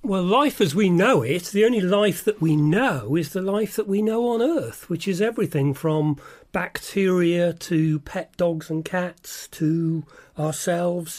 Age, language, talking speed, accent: 40-59, English, 170 wpm, British